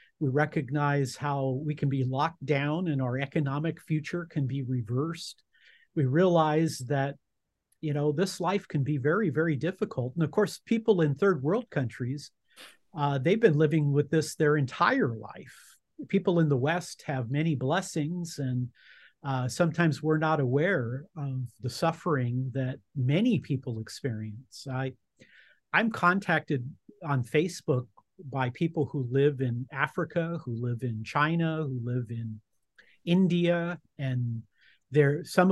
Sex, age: male, 50-69